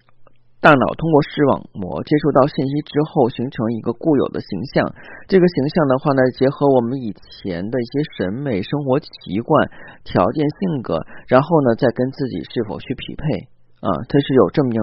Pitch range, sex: 120-180 Hz, male